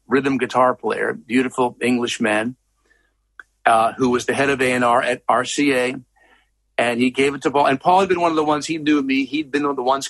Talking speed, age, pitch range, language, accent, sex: 225 wpm, 50-69, 130-200 Hz, English, American, male